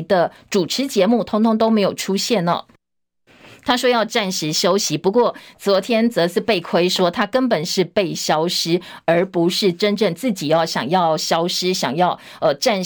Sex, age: female, 50-69